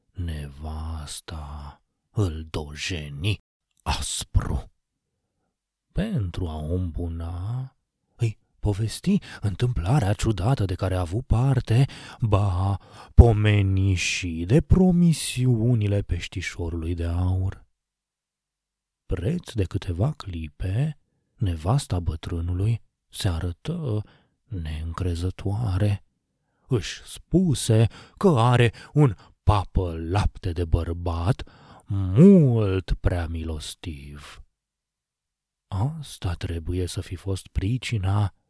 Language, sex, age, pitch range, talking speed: Romanian, male, 30-49, 85-110 Hz, 80 wpm